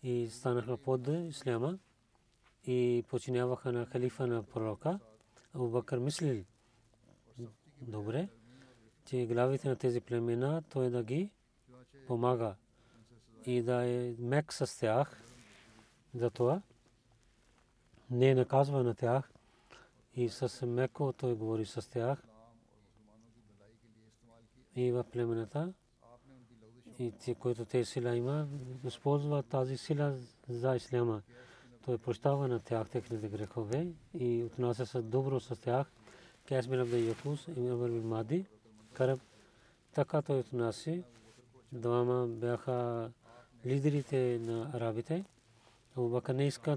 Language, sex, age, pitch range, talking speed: Bulgarian, male, 40-59, 115-130 Hz, 110 wpm